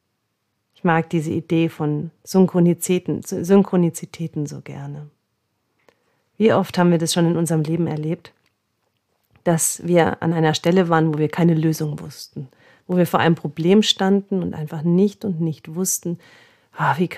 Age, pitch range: 40-59, 160-195 Hz